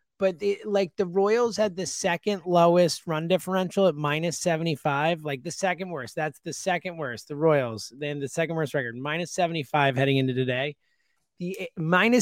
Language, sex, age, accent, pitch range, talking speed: English, male, 30-49, American, 155-225 Hz, 175 wpm